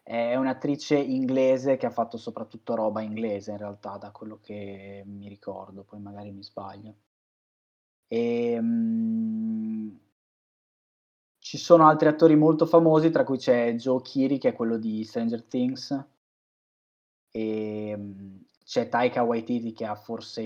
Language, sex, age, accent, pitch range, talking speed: Italian, male, 20-39, native, 105-140 Hz, 130 wpm